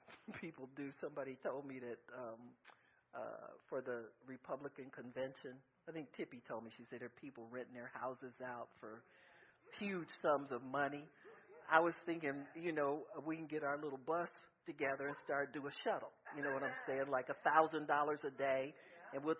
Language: English